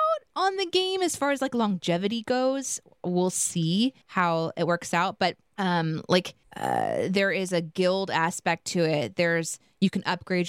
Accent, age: American, 20-39